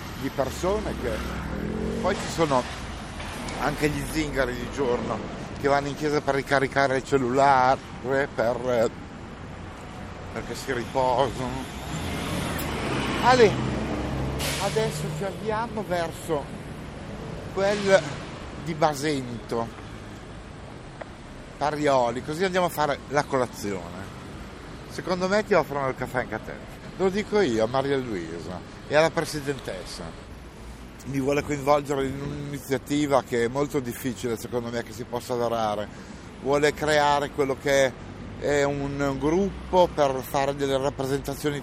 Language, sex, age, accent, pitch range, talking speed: Italian, male, 50-69, native, 115-145 Hz, 115 wpm